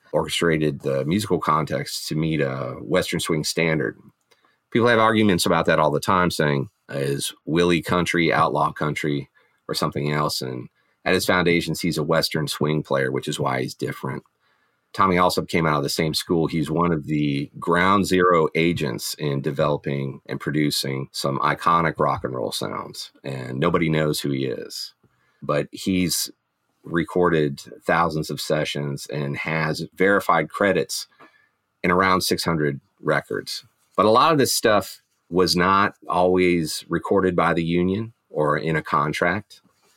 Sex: male